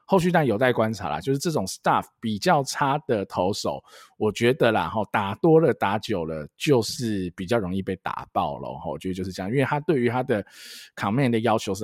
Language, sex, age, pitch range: Chinese, male, 20-39, 95-130 Hz